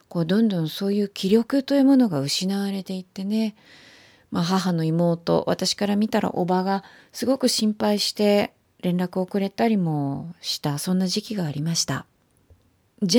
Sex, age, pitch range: female, 30-49, 165-215 Hz